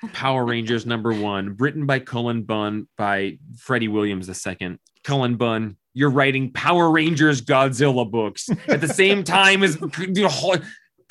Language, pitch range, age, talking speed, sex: English, 120-165 Hz, 20-39, 150 wpm, male